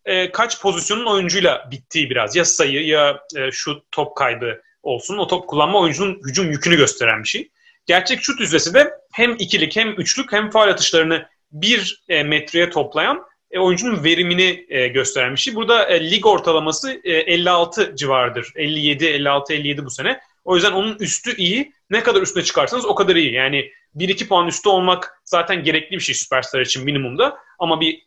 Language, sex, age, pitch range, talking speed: Turkish, male, 30-49, 150-225 Hz, 160 wpm